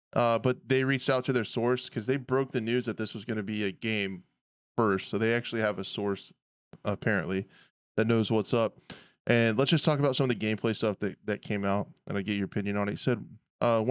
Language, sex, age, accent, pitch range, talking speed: English, male, 20-39, American, 100-120 Hz, 245 wpm